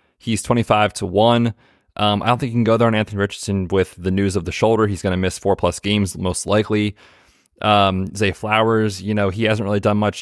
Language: English